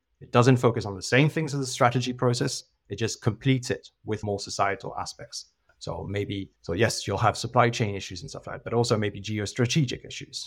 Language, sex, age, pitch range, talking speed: English, male, 30-49, 100-130 Hz, 210 wpm